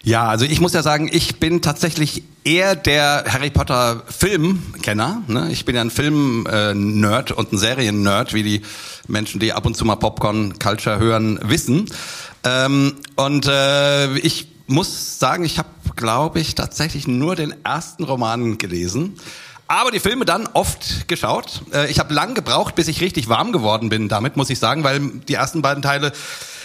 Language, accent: German, German